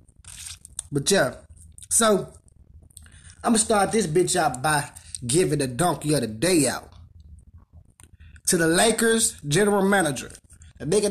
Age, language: 20-39, English